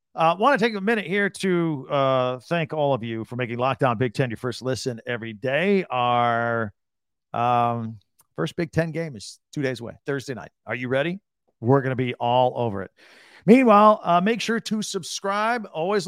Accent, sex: American, male